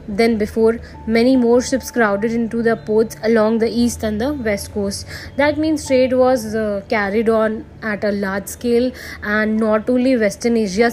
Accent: native